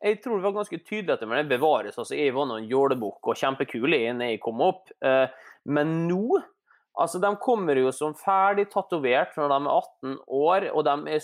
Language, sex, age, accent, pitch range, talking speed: English, male, 20-39, Swedish, 140-205 Hz, 205 wpm